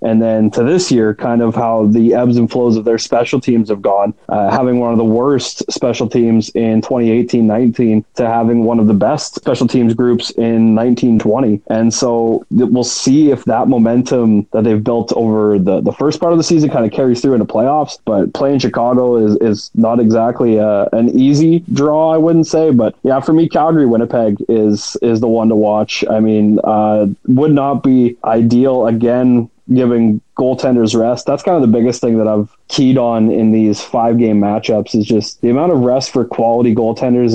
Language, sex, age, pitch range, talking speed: English, male, 20-39, 110-125 Hz, 195 wpm